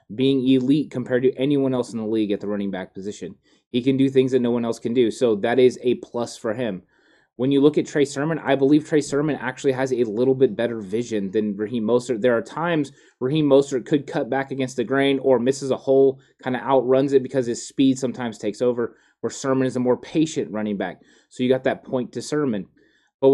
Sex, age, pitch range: male, 20-39, 110-135 Hz